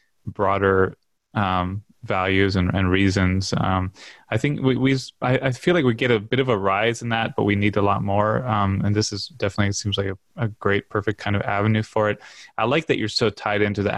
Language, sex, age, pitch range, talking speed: English, male, 20-39, 95-105 Hz, 235 wpm